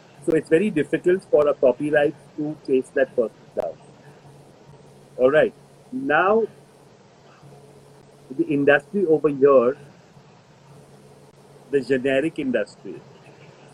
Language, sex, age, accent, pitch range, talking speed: Hindi, male, 40-59, native, 130-170 Hz, 95 wpm